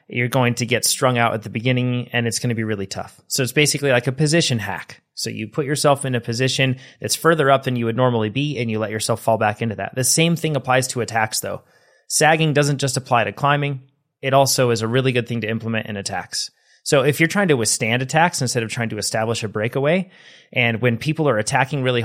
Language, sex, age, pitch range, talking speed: English, male, 30-49, 115-145 Hz, 245 wpm